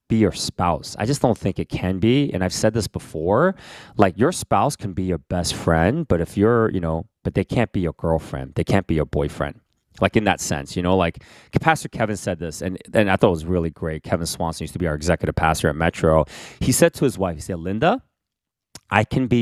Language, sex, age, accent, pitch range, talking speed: English, male, 30-49, American, 80-105 Hz, 240 wpm